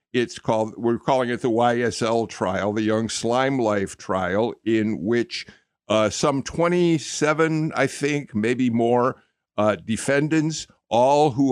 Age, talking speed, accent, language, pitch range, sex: 50-69, 135 wpm, American, English, 110-150 Hz, male